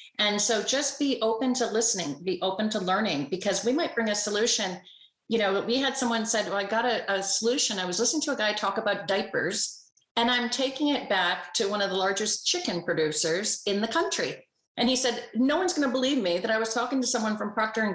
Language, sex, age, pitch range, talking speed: English, female, 40-59, 180-230 Hz, 235 wpm